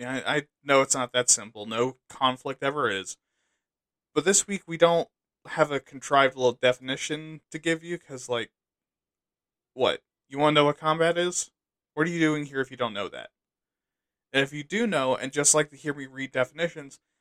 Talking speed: 200 wpm